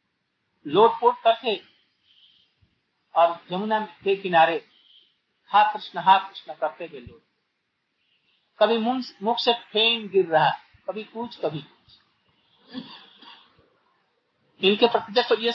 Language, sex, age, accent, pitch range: Hindi, male, 50-69, native, 180-235 Hz